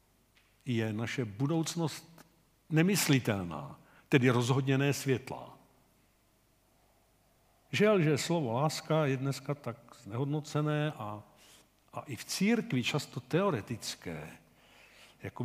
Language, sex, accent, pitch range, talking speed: Czech, male, native, 120-155 Hz, 90 wpm